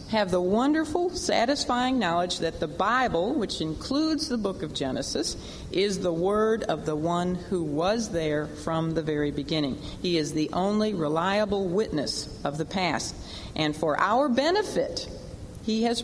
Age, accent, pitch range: 40-59, American, 155-210 Hz